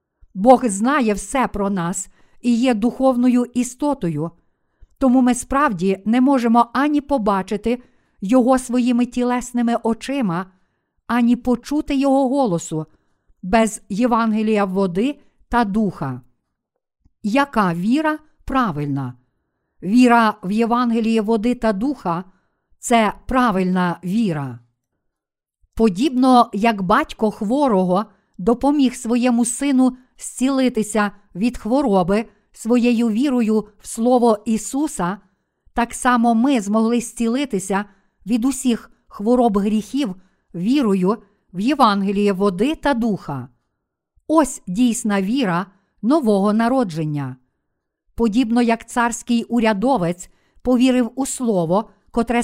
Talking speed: 95 wpm